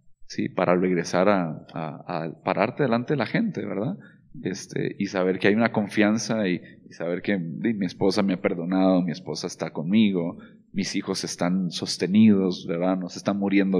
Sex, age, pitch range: male, 40-59, 95-120 Hz